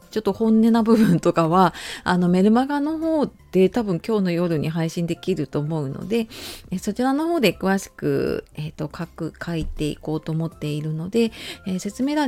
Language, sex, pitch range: Japanese, female, 155-205 Hz